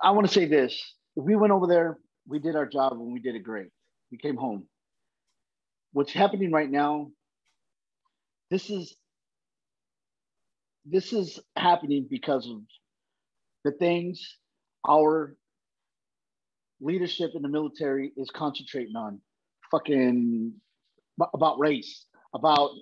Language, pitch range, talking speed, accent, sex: English, 145-190 Hz, 115 wpm, American, male